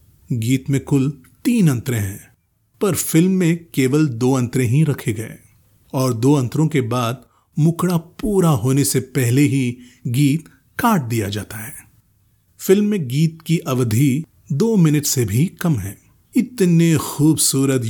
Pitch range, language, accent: 120-155 Hz, Hindi, native